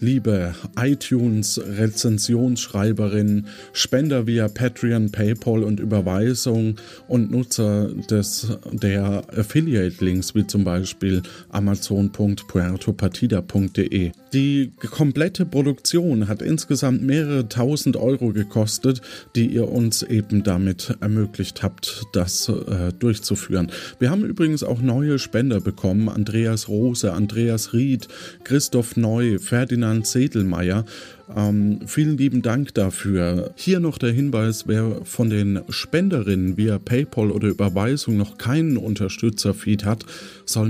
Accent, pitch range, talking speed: German, 100-125 Hz, 110 wpm